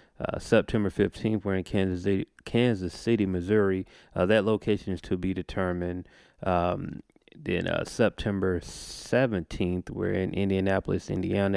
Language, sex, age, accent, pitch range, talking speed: English, male, 30-49, American, 95-105 Hz, 130 wpm